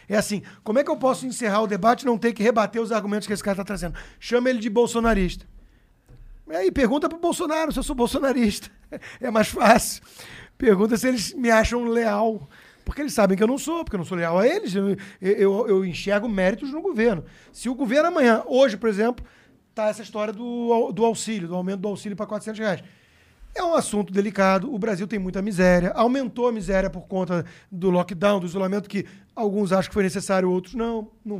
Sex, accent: male, Brazilian